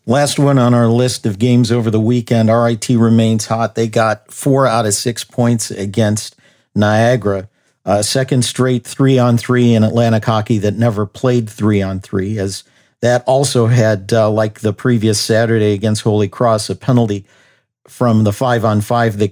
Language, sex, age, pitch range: English, male, 50-69, 105-120 Hz